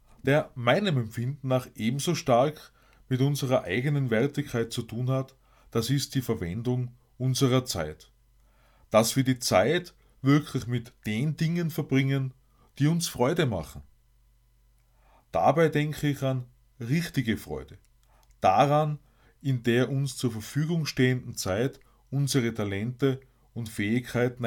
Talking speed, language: 125 wpm, German